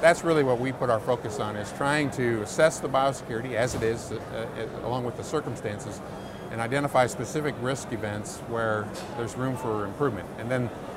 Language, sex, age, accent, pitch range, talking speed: English, male, 50-69, American, 105-130 Hz, 190 wpm